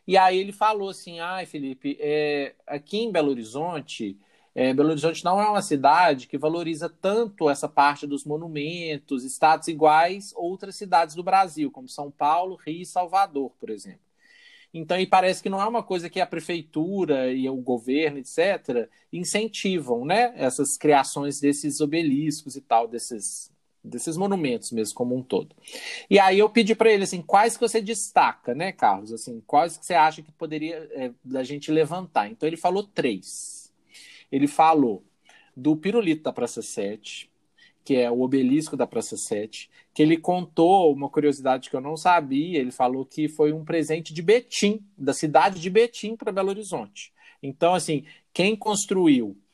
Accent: Brazilian